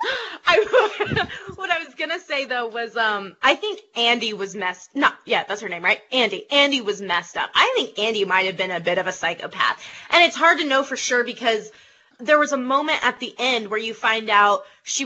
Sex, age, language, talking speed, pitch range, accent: female, 20-39, English, 225 wpm, 220-290 Hz, American